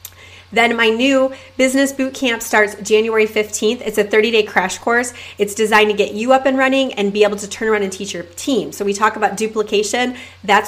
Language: English